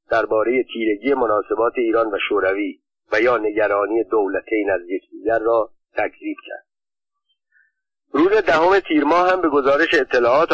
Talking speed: 125 wpm